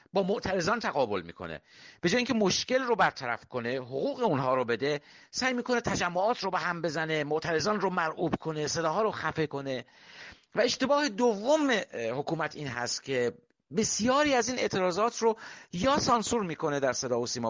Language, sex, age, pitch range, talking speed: English, male, 50-69, 155-210 Hz, 170 wpm